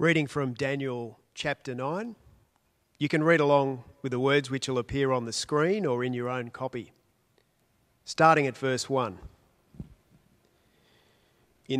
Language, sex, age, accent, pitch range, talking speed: English, male, 40-59, Australian, 120-145 Hz, 140 wpm